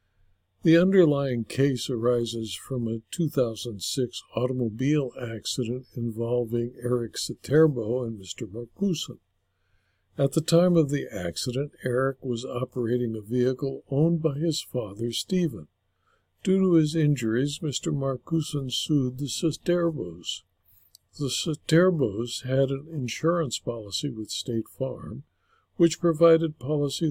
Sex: male